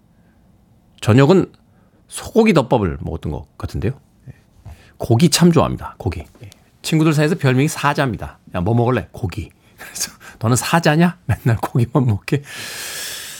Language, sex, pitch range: Korean, male, 110-160 Hz